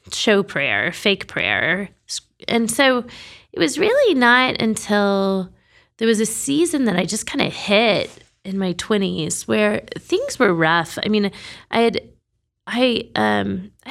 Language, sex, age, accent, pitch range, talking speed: English, female, 20-39, American, 175-230 Hz, 140 wpm